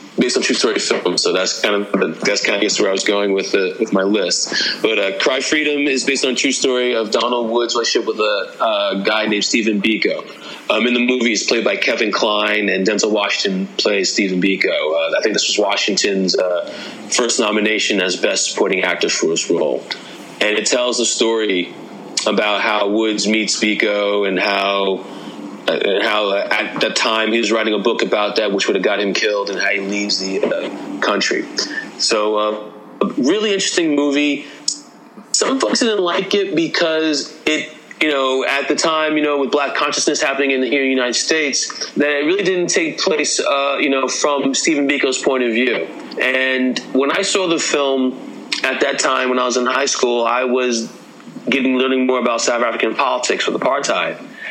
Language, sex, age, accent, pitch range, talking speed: English, male, 30-49, American, 105-145 Hz, 205 wpm